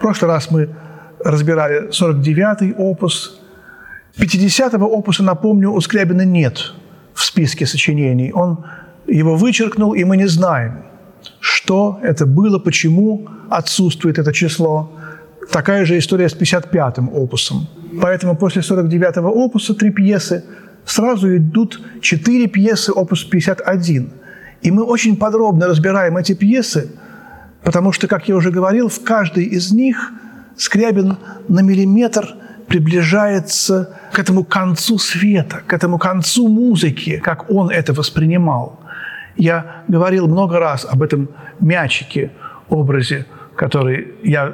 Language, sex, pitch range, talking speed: Russian, male, 160-200 Hz, 125 wpm